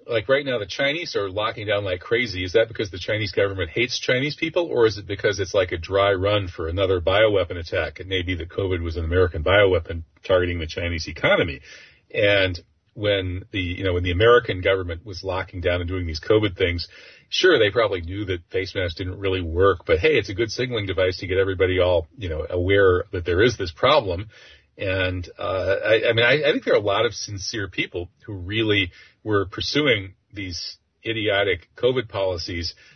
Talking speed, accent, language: 210 wpm, American, English